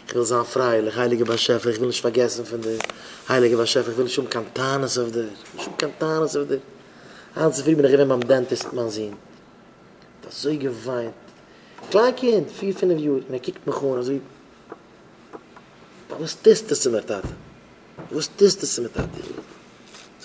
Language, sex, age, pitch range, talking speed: English, male, 30-49, 130-175 Hz, 155 wpm